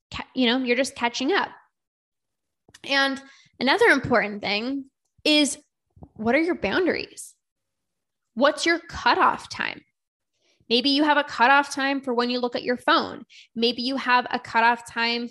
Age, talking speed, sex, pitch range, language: 10-29, 150 wpm, female, 225-270 Hz, English